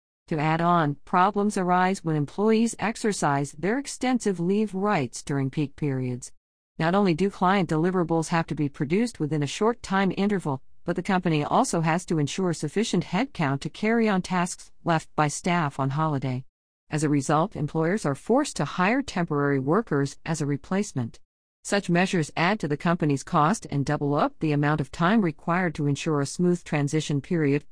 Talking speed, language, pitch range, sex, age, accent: 175 wpm, English, 140-190 Hz, female, 50-69, American